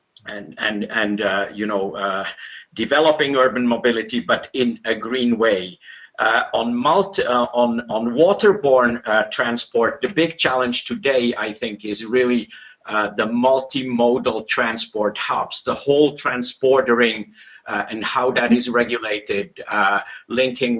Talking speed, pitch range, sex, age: 140 wpm, 115-130 Hz, male, 50-69